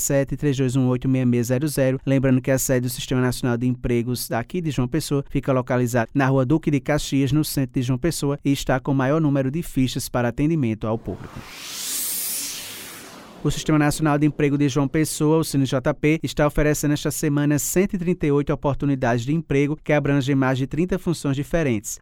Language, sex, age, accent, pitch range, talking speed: Portuguese, male, 20-39, Brazilian, 130-150 Hz, 170 wpm